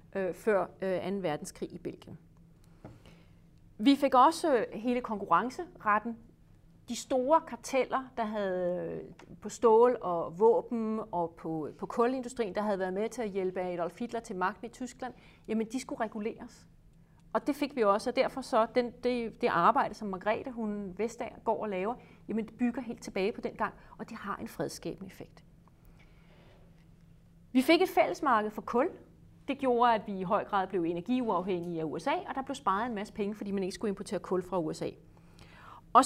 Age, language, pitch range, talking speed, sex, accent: 40-59, Danish, 190-245 Hz, 175 wpm, female, native